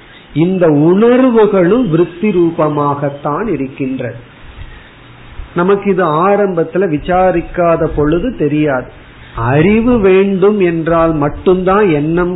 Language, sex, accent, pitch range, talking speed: Tamil, male, native, 145-195 Hz, 60 wpm